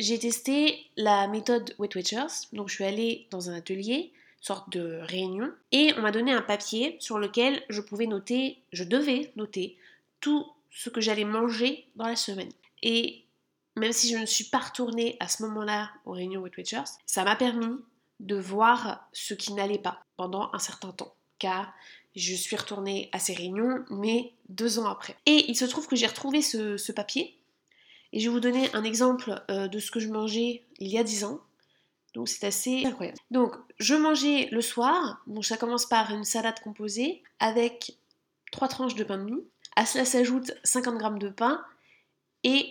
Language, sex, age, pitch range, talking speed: French, female, 20-39, 205-250 Hz, 190 wpm